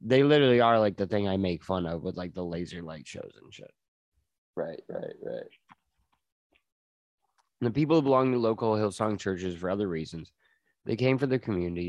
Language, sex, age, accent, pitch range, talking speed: English, male, 20-39, American, 85-110 Hz, 185 wpm